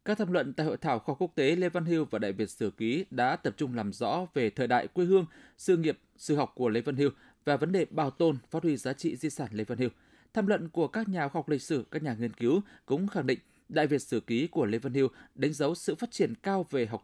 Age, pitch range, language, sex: 20-39, 130-180 Hz, Vietnamese, male